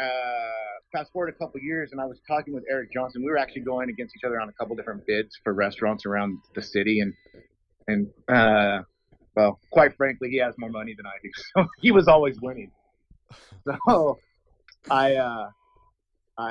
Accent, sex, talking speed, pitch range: American, male, 190 wpm, 105-135 Hz